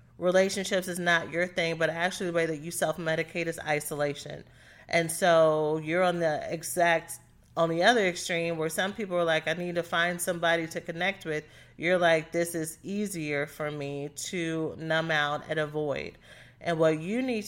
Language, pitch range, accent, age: English, 160-175 Hz, American, 30-49